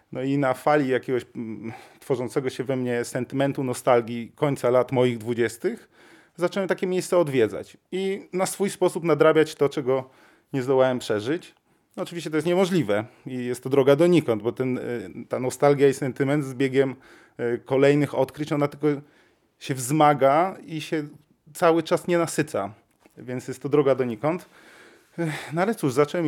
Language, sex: Polish, male